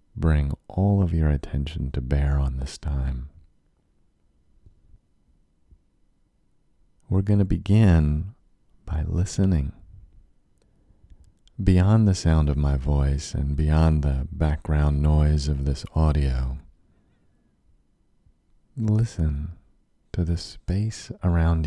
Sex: male